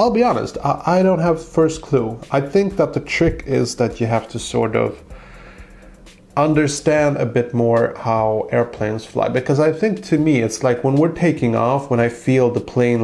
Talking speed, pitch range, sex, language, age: 195 wpm, 120-155 Hz, male, English, 30-49